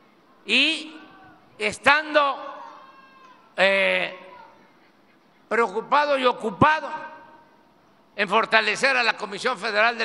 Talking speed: 80 wpm